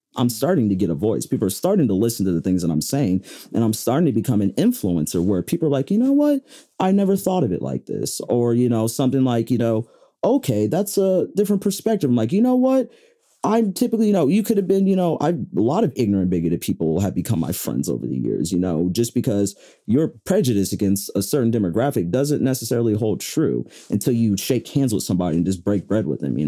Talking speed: 240 wpm